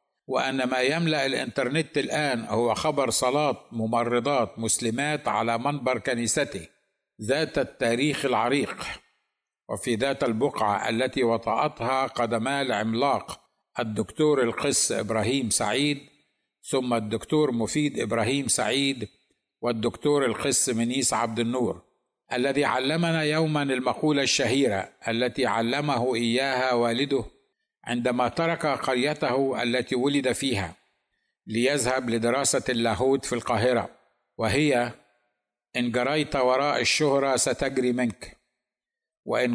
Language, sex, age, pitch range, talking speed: Arabic, male, 60-79, 120-140 Hz, 100 wpm